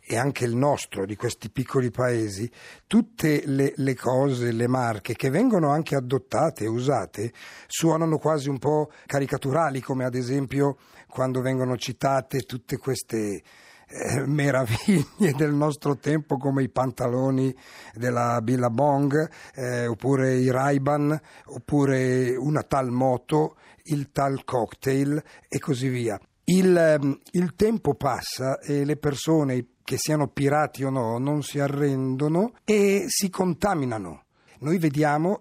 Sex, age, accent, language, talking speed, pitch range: male, 50-69, native, Italian, 130 wpm, 125-150 Hz